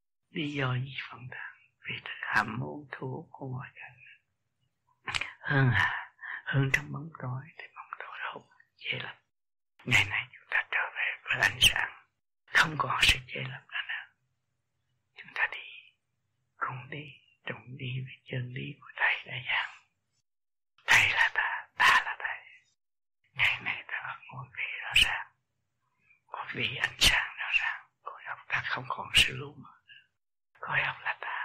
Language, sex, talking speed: Vietnamese, male, 165 wpm